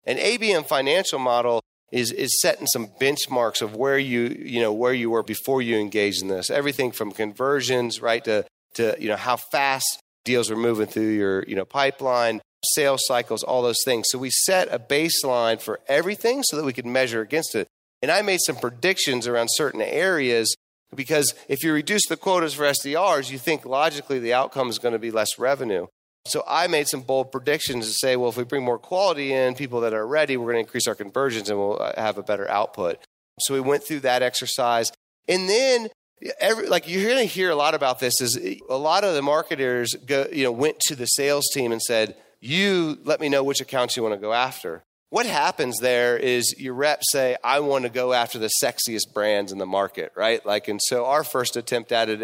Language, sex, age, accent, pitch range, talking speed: English, male, 30-49, American, 115-140 Hz, 215 wpm